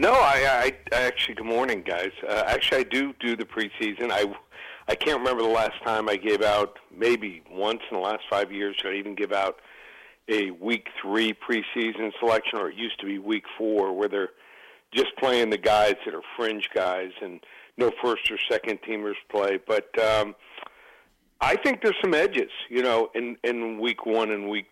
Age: 50-69